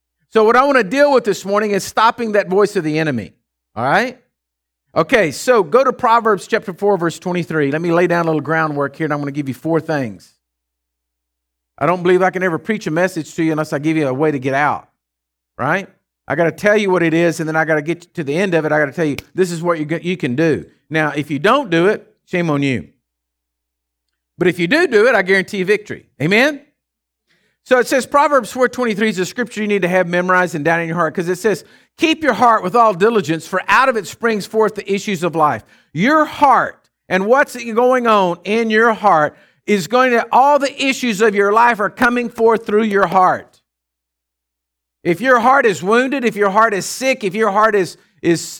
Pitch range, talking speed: 155-225 Hz, 235 wpm